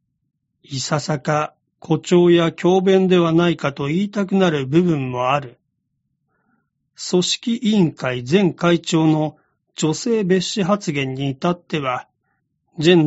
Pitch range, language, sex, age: 150-185 Hz, Japanese, male, 40-59